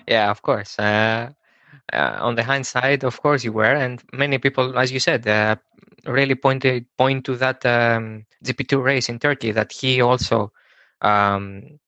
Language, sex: Greek, male